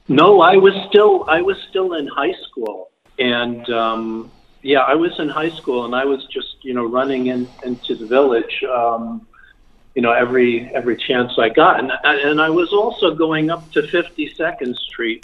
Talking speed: 185 wpm